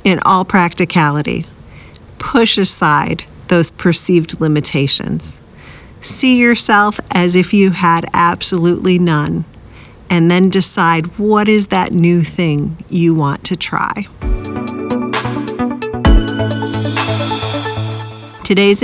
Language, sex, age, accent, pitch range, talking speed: English, female, 50-69, American, 150-190 Hz, 90 wpm